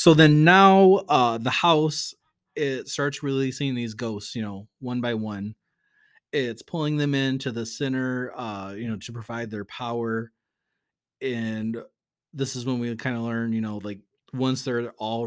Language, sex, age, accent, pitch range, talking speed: English, male, 20-39, American, 110-130 Hz, 170 wpm